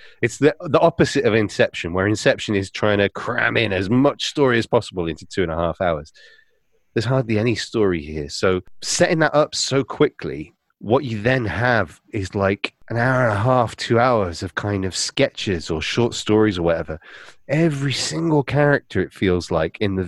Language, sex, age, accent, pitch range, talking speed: English, male, 30-49, British, 90-125 Hz, 195 wpm